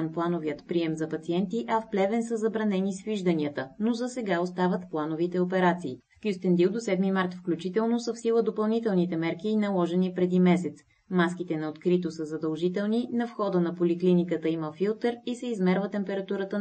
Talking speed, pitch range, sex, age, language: 165 wpm, 165-205 Hz, female, 20-39, Bulgarian